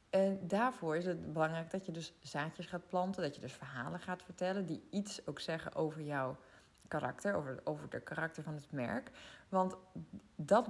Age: 20-39